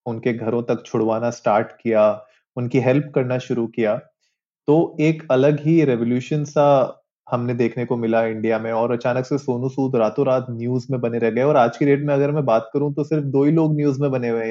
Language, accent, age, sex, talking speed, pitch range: Hindi, native, 30-49, male, 225 wpm, 120-145 Hz